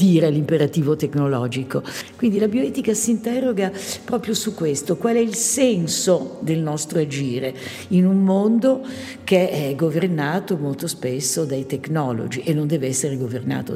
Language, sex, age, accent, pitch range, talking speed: Italian, female, 50-69, native, 145-180 Hz, 145 wpm